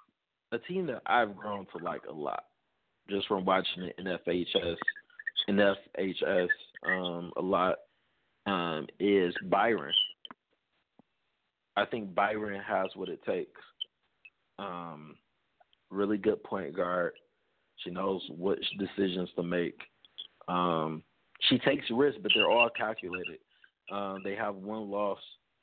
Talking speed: 125 wpm